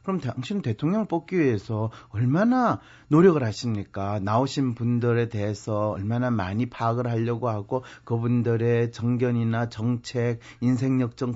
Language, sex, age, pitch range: Korean, male, 40-59, 120-195 Hz